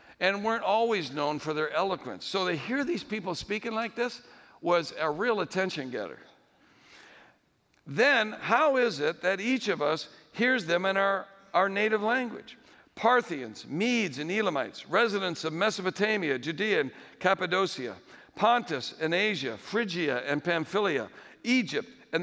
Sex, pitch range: male, 175-240 Hz